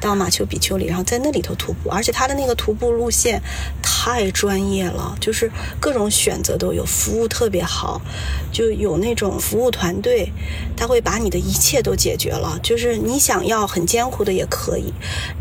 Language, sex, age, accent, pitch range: Chinese, female, 30-49, native, 190-250 Hz